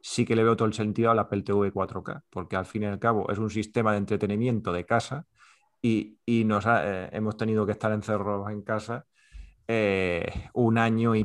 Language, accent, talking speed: Spanish, Spanish, 205 wpm